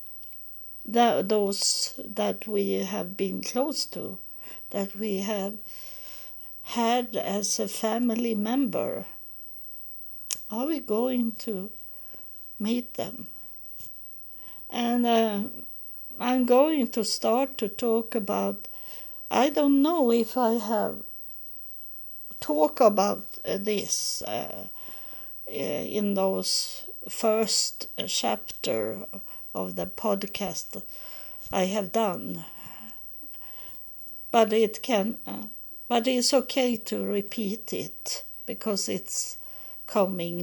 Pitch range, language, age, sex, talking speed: 200-245 Hz, English, 60-79, female, 95 wpm